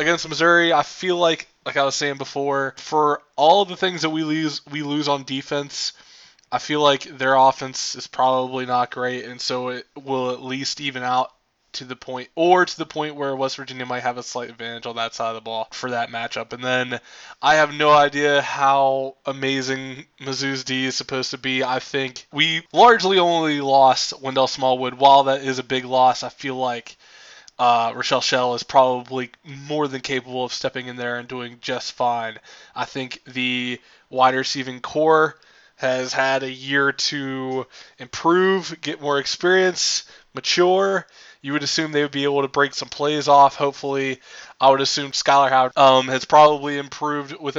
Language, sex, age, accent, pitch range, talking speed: English, male, 20-39, American, 130-145 Hz, 190 wpm